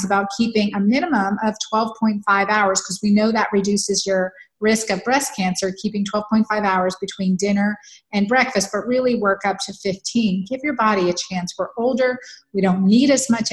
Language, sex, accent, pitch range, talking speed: English, female, American, 195-225 Hz, 185 wpm